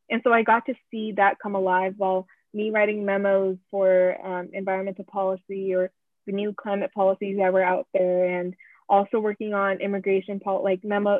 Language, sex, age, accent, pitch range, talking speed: English, female, 20-39, American, 195-225 Hz, 175 wpm